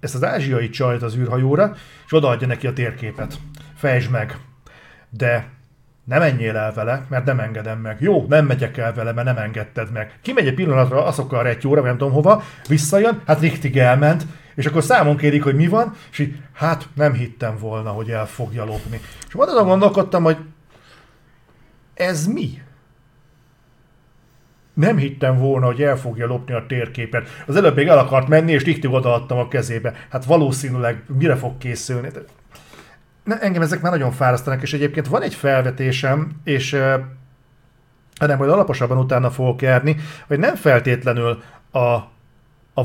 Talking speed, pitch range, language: 160 wpm, 120-150 Hz, Hungarian